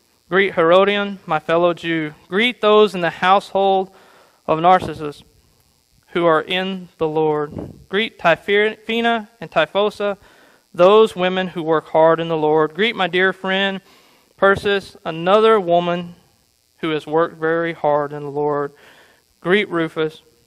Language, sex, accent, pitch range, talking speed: English, male, American, 155-195 Hz, 135 wpm